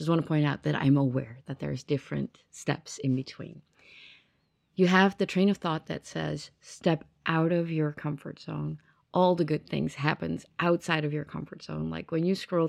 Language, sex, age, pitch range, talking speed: English, female, 30-49, 145-175 Hz, 200 wpm